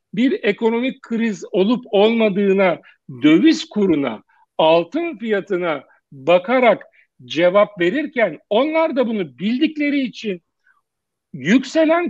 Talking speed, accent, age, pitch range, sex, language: 90 wpm, native, 60-79, 195-235 Hz, male, Turkish